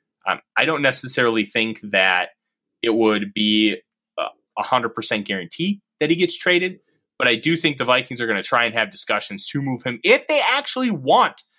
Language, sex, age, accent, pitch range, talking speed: English, male, 30-49, American, 120-165 Hz, 190 wpm